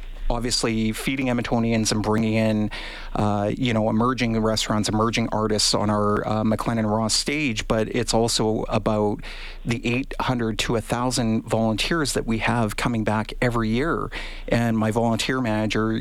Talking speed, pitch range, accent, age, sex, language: 140 wpm, 110-125 Hz, American, 40-59, male, English